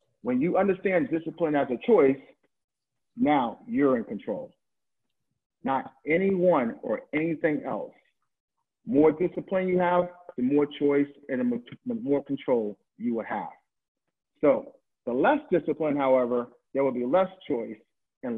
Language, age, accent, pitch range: English, 50-69, American, 140-180 Hz